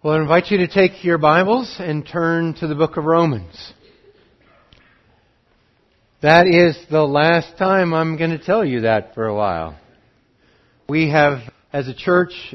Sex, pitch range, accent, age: male, 125-170 Hz, American, 50-69